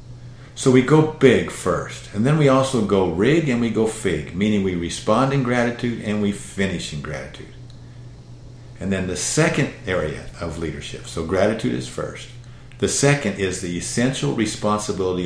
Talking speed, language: 165 wpm, English